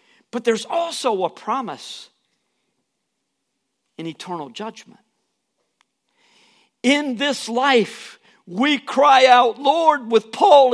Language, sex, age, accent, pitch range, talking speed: English, male, 50-69, American, 185-255 Hz, 95 wpm